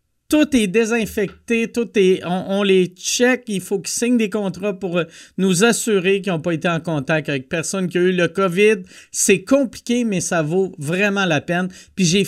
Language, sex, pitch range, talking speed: French, male, 160-235 Hz, 200 wpm